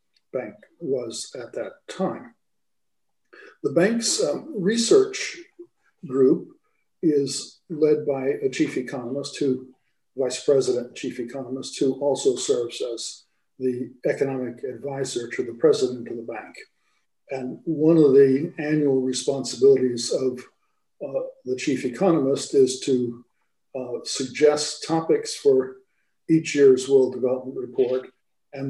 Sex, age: male, 50-69